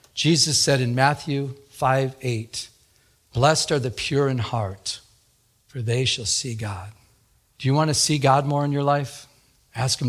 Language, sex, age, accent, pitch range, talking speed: English, male, 50-69, American, 125-190 Hz, 170 wpm